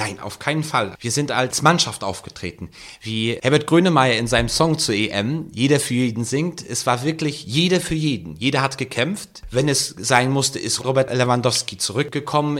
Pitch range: 115-150 Hz